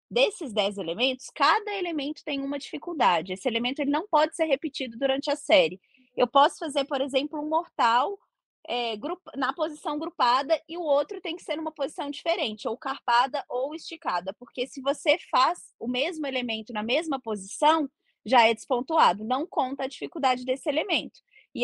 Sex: female